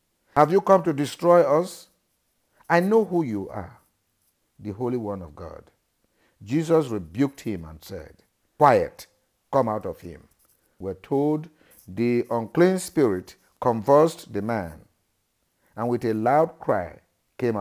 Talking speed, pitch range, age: 135 wpm, 100-145 Hz, 50-69